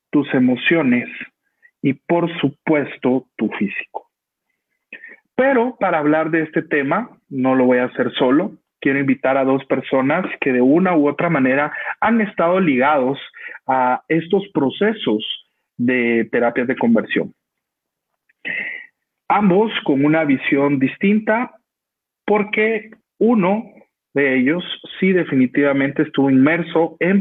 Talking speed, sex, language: 120 wpm, male, Spanish